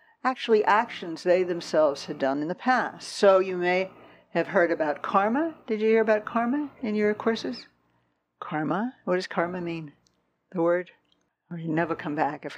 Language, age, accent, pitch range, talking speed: English, 60-79, American, 170-250 Hz, 175 wpm